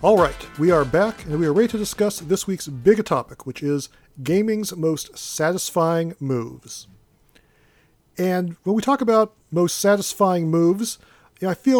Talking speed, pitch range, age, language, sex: 160 wpm, 155-205 Hz, 40-59, English, male